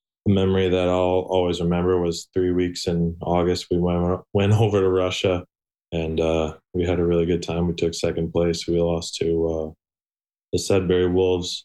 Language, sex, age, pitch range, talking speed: English, male, 20-39, 85-95 Hz, 185 wpm